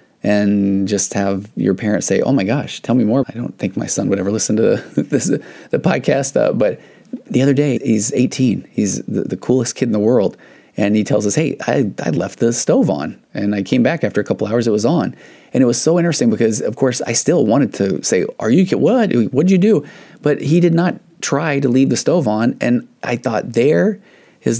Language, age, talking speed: English, 30-49, 235 wpm